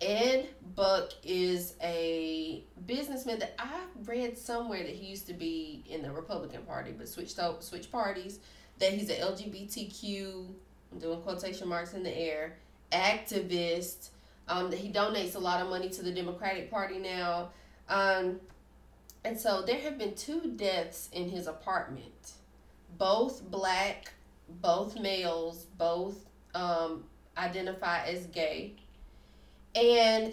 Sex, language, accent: female, English, American